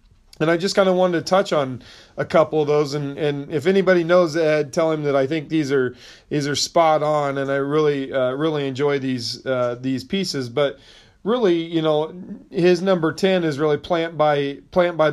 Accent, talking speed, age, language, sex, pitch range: American, 210 wpm, 40-59, English, male, 135-160 Hz